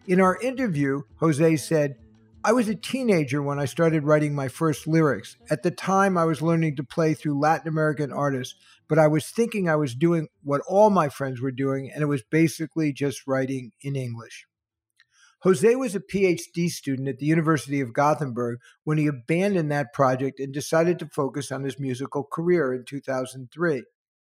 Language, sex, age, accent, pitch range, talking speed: English, male, 50-69, American, 135-170 Hz, 185 wpm